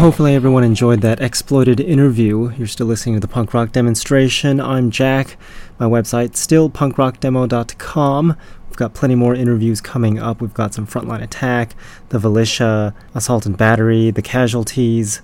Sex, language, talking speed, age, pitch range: male, English, 155 wpm, 30-49, 110-125 Hz